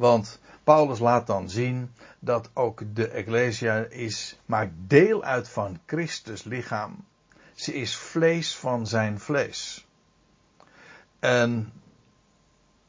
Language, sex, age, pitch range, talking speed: Dutch, male, 60-79, 110-155 Hz, 100 wpm